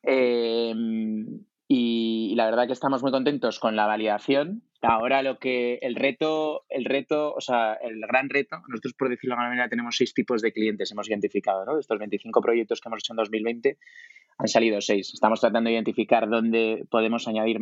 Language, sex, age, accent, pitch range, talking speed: Spanish, male, 20-39, Spanish, 110-130 Hz, 200 wpm